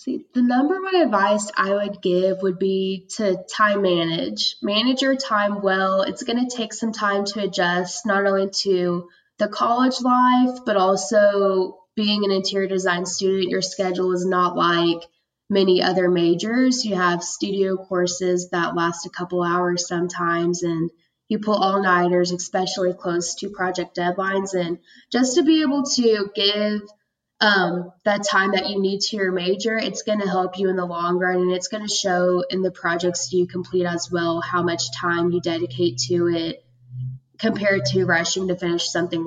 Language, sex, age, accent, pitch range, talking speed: English, female, 10-29, American, 180-210 Hz, 175 wpm